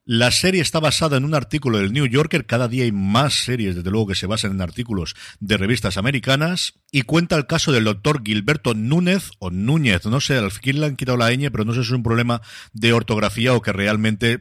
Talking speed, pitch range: 235 wpm, 105-130 Hz